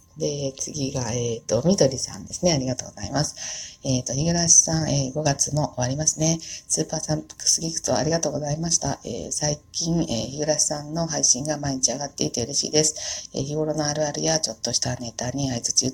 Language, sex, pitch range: Japanese, female, 120-160 Hz